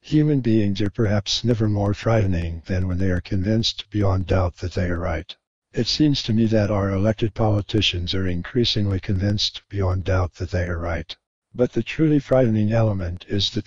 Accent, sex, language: American, male, English